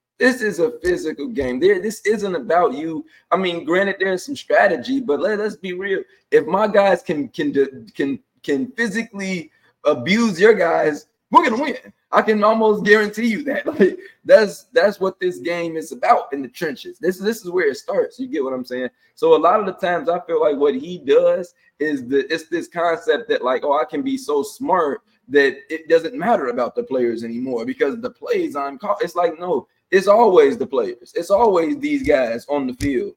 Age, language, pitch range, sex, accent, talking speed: 20-39, English, 155-240 Hz, male, American, 205 wpm